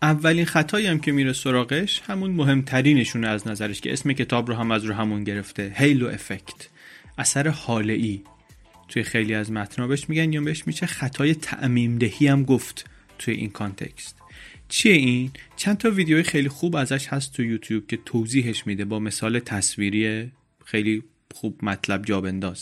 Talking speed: 155 wpm